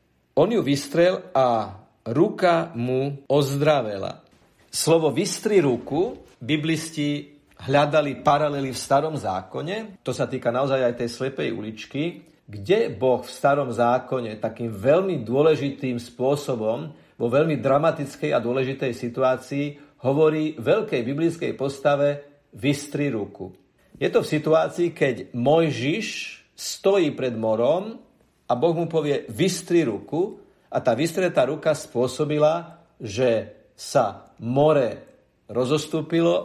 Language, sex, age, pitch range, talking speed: Slovak, male, 50-69, 125-155 Hz, 115 wpm